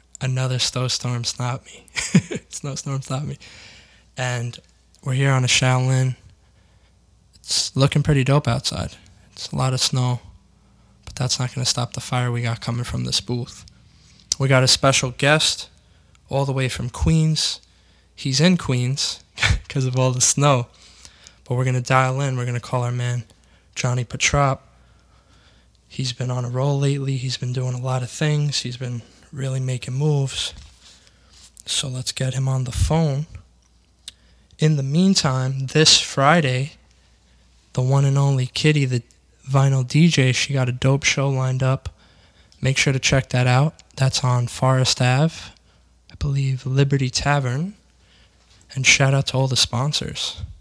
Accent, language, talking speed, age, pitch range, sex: American, English, 160 wpm, 10-29, 105-135 Hz, male